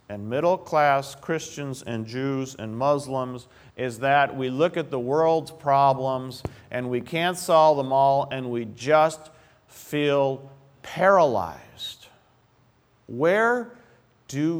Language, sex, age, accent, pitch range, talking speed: English, male, 50-69, American, 115-155 Hz, 115 wpm